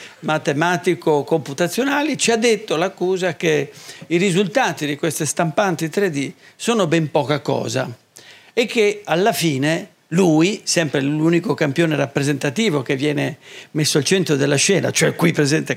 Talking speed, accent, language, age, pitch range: 135 wpm, native, Italian, 50-69, 150-195 Hz